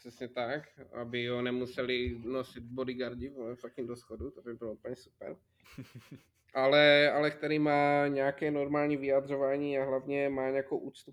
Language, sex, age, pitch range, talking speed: Czech, male, 20-39, 120-140 Hz, 150 wpm